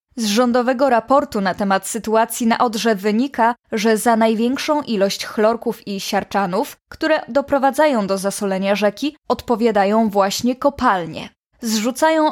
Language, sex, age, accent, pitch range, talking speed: Polish, female, 20-39, native, 210-270 Hz, 120 wpm